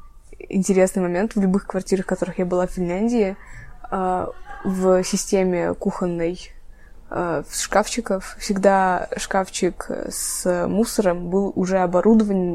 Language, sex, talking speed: Russian, female, 105 wpm